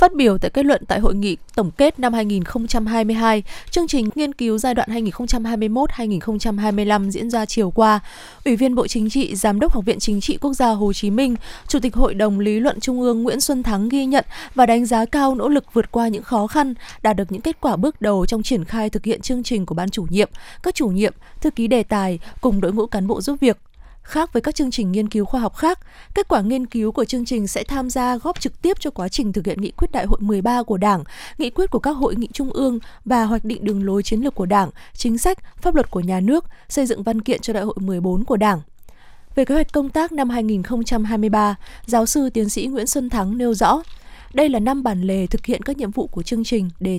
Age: 20-39